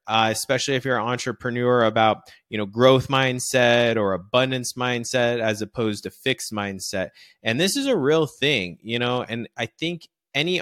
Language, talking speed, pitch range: English, 180 wpm, 110-135 Hz